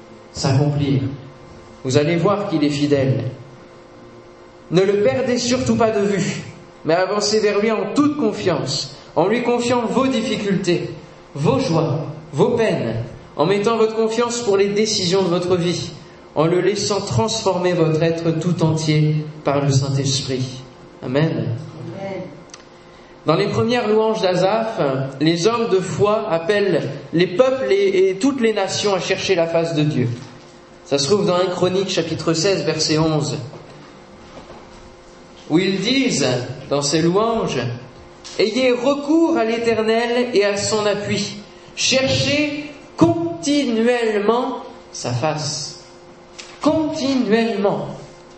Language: French